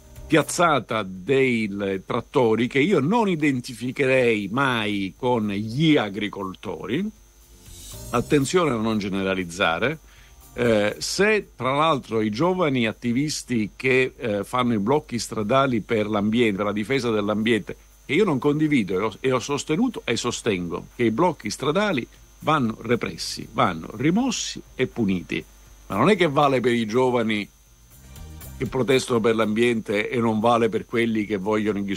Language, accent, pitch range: Italian, native, 105-135 Hz